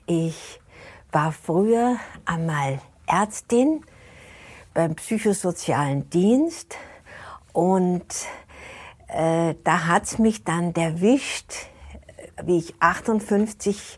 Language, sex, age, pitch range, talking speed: German, female, 60-79, 165-205 Hz, 80 wpm